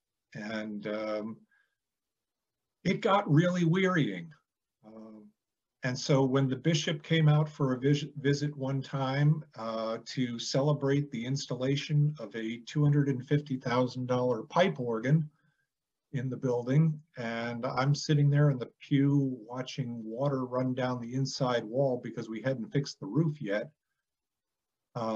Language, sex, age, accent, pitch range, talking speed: English, male, 50-69, American, 125-150 Hz, 125 wpm